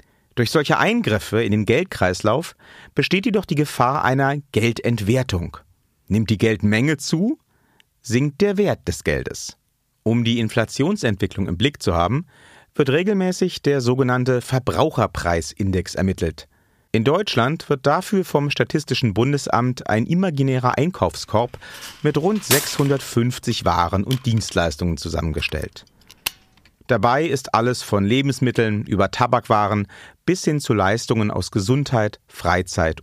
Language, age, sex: German, 40-59, male